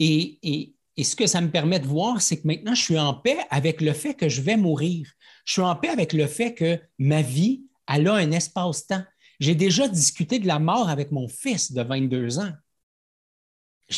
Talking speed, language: 215 wpm, French